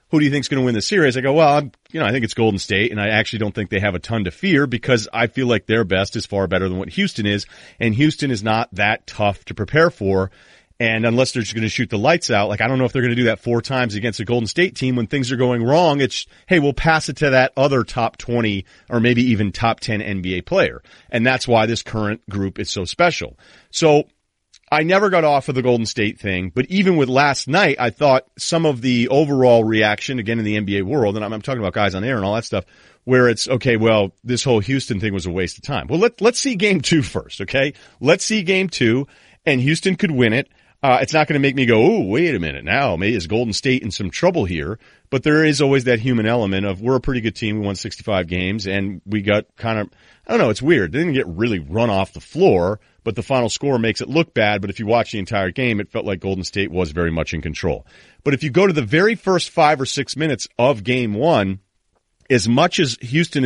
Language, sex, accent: English, male, American